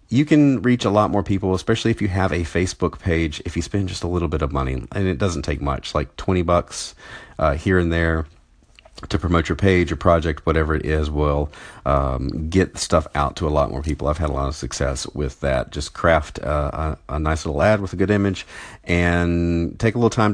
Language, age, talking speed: English, 40-59, 230 wpm